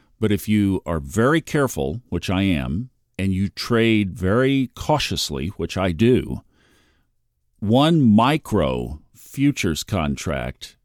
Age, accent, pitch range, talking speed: 50-69, American, 90-120 Hz, 115 wpm